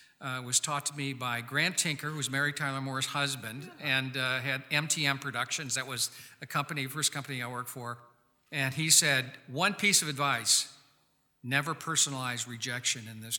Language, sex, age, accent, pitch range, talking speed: English, male, 50-69, American, 130-155 Hz, 180 wpm